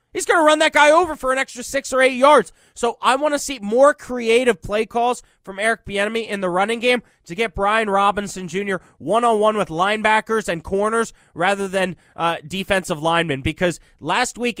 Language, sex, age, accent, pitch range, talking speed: English, male, 20-39, American, 180-235 Hz, 195 wpm